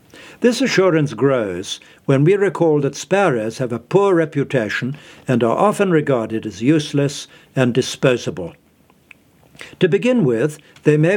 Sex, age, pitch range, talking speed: male, 60-79, 140-175 Hz, 135 wpm